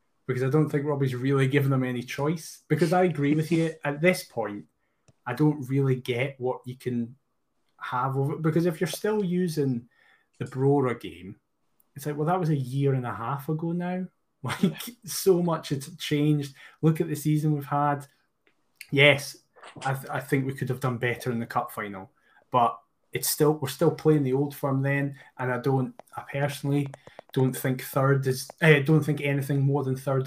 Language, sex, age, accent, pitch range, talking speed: English, male, 20-39, British, 130-150 Hz, 195 wpm